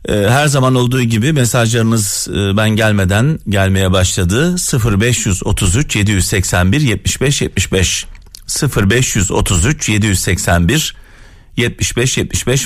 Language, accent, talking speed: Turkish, native, 80 wpm